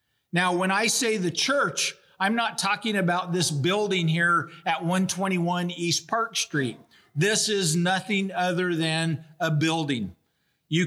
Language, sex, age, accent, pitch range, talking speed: English, male, 50-69, American, 165-205 Hz, 145 wpm